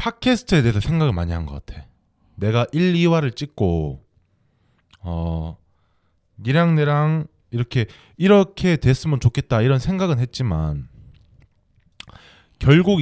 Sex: male